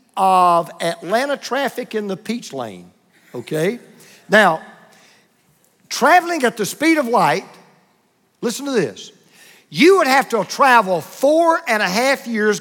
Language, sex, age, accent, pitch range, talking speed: English, male, 50-69, American, 205-270 Hz, 135 wpm